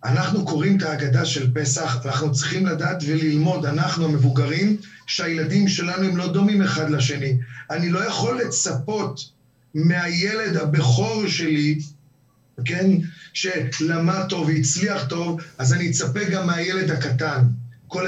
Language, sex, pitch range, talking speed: Hebrew, male, 135-175 Hz, 125 wpm